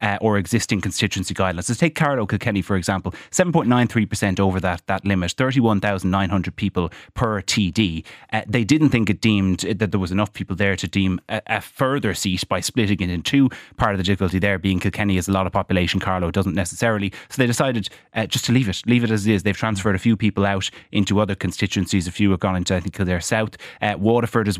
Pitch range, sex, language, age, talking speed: 95-115 Hz, male, English, 30-49, 225 wpm